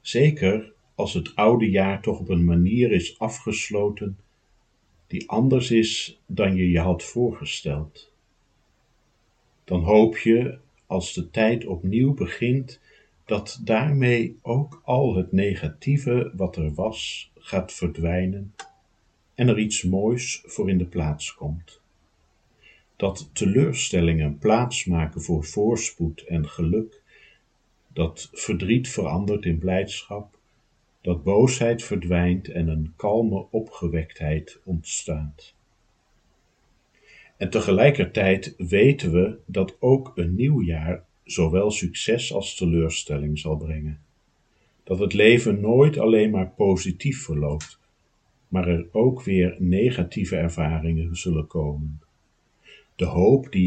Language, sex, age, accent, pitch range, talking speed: Dutch, male, 50-69, Dutch, 85-110 Hz, 115 wpm